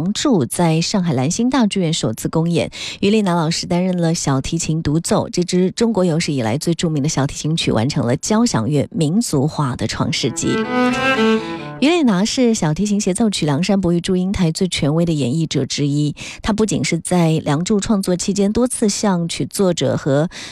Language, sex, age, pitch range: Chinese, female, 20-39, 145-200 Hz